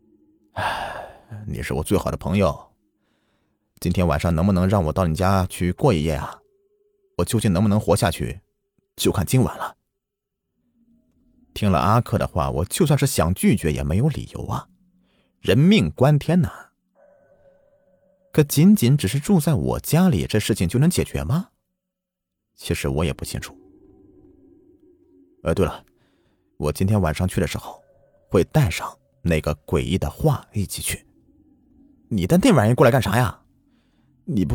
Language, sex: Chinese, male